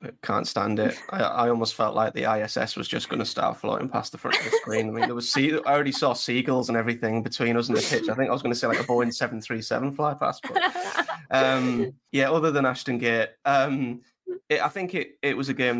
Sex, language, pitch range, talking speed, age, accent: male, English, 115-135 Hz, 245 wpm, 20-39, British